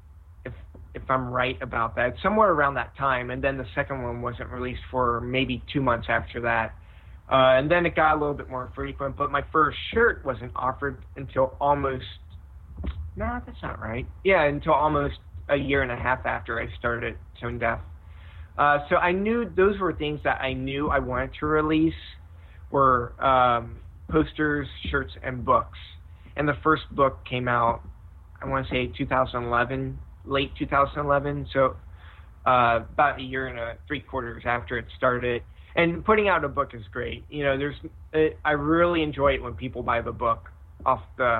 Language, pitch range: English, 115-145 Hz